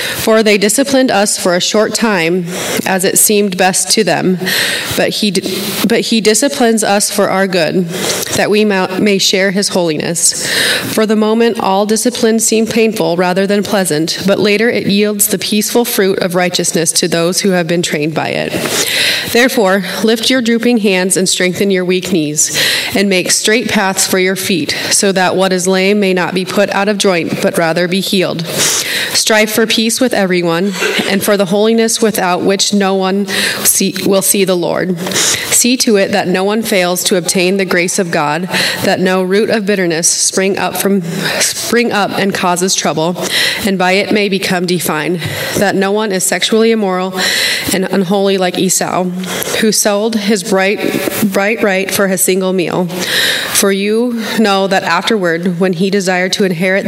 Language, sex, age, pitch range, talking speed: English, female, 30-49, 185-210 Hz, 180 wpm